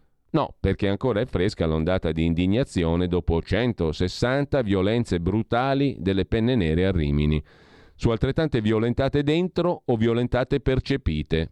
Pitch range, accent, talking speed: 80-110 Hz, native, 125 wpm